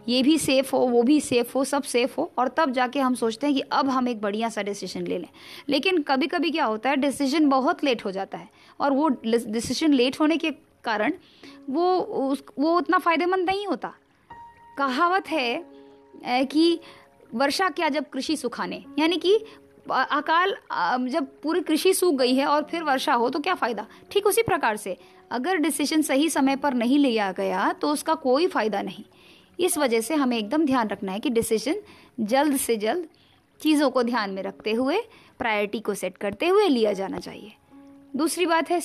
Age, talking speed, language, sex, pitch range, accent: 20-39, 190 wpm, Hindi, female, 245-330 Hz, native